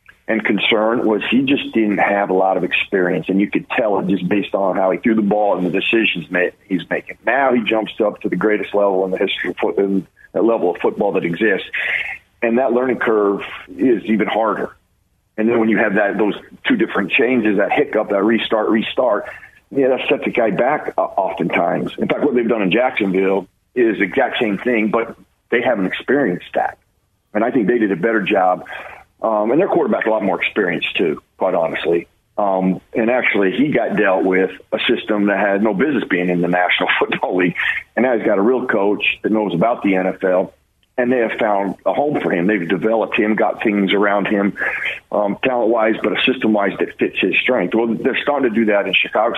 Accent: American